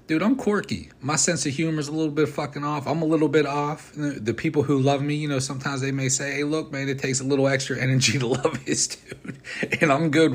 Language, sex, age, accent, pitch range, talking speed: English, male, 30-49, American, 100-135 Hz, 265 wpm